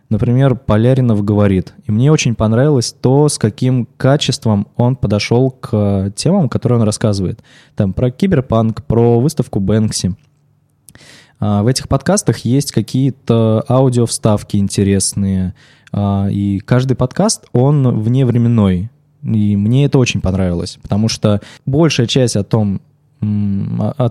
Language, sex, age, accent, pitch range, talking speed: Russian, male, 20-39, native, 105-130 Hz, 120 wpm